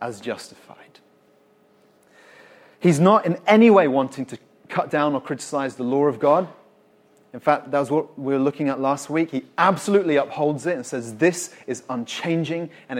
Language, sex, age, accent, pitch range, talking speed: English, male, 30-49, British, 130-175 Hz, 175 wpm